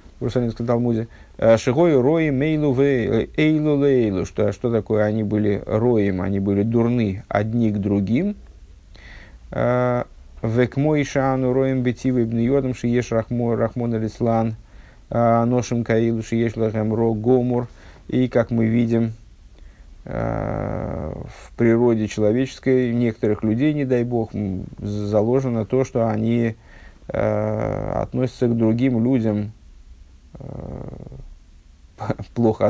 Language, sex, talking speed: Russian, male, 70 wpm